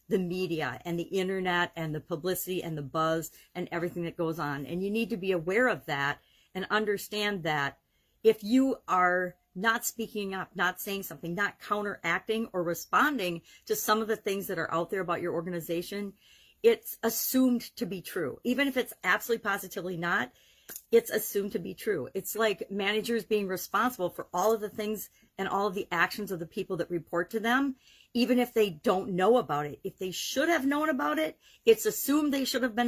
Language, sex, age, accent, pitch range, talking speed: English, female, 50-69, American, 175-225 Hz, 200 wpm